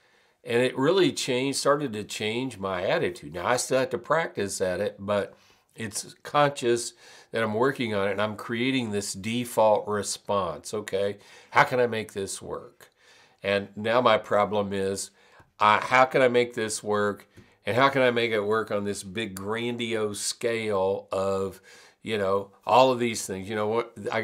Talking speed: 180 wpm